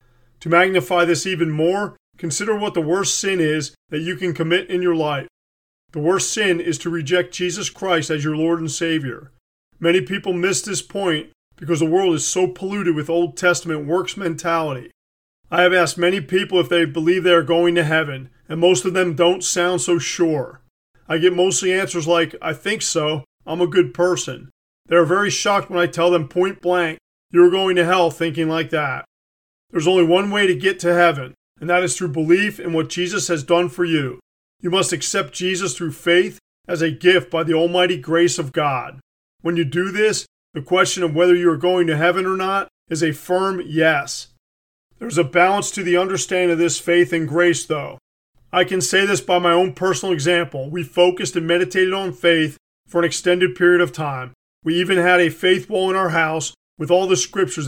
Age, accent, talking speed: 40-59, American, 205 wpm